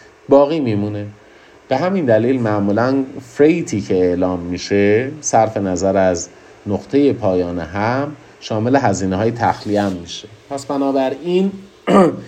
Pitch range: 95-120 Hz